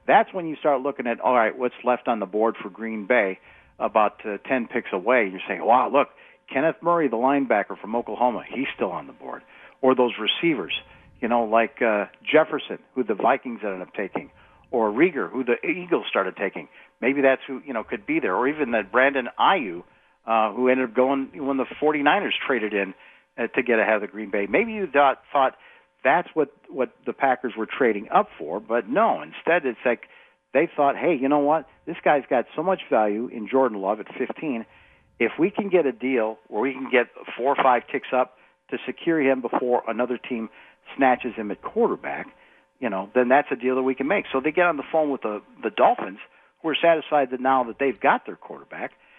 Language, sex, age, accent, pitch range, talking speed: English, male, 50-69, American, 115-150 Hz, 220 wpm